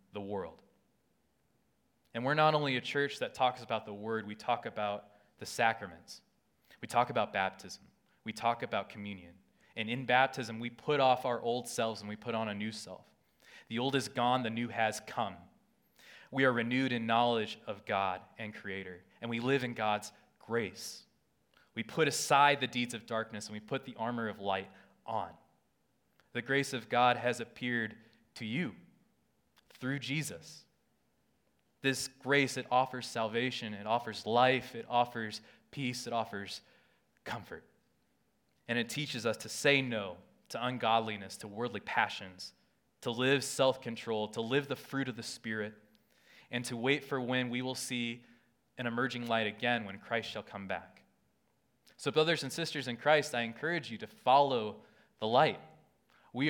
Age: 20-39